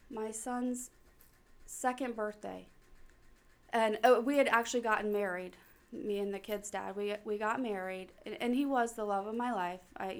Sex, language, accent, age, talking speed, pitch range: female, English, American, 20-39, 175 wpm, 205-255 Hz